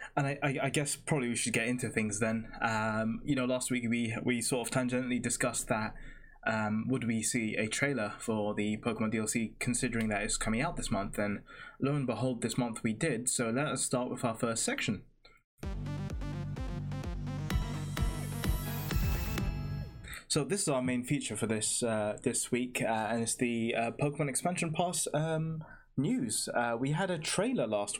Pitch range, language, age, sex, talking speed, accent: 115-130 Hz, English, 20-39, male, 180 wpm, British